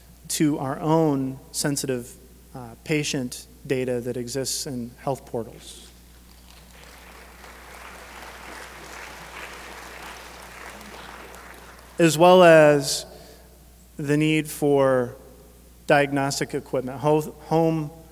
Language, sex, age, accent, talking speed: English, male, 40-59, American, 70 wpm